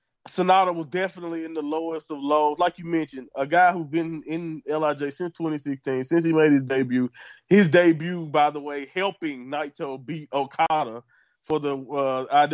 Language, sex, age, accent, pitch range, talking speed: English, male, 20-39, American, 140-170 Hz, 170 wpm